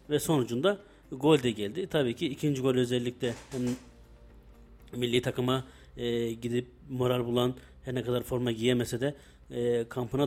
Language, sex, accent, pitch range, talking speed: Turkish, male, native, 120-140 Hz, 140 wpm